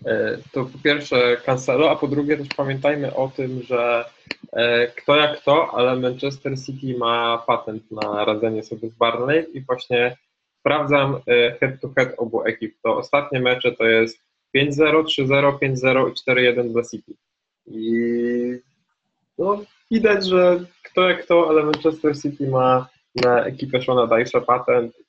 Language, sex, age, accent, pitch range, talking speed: Polish, male, 20-39, native, 115-140 Hz, 140 wpm